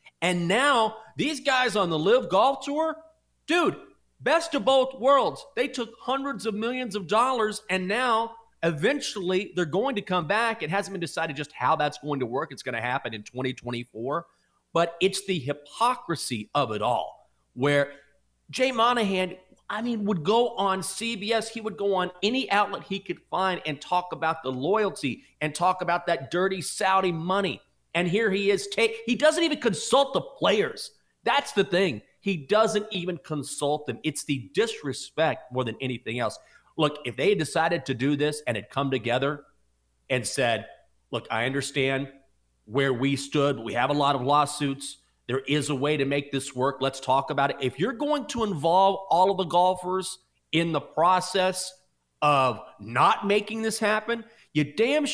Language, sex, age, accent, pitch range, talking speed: English, male, 40-59, American, 140-220 Hz, 175 wpm